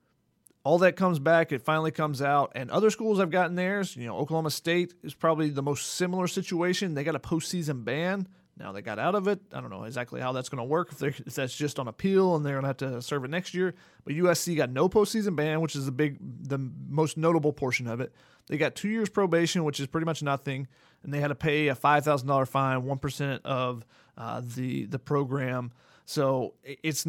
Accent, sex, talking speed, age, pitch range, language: American, male, 235 wpm, 30-49, 140-175 Hz, English